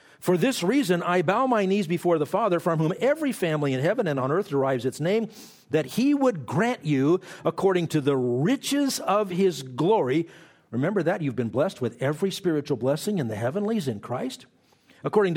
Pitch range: 135-185 Hz